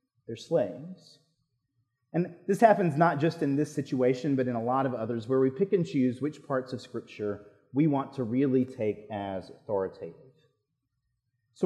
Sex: male